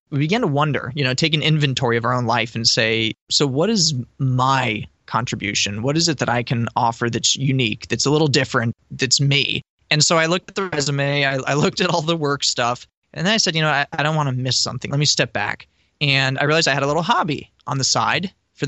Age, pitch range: 20-39, 125-155 Hz